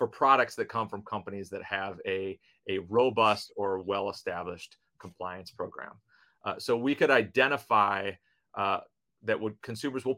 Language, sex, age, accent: English, male, 30-49, American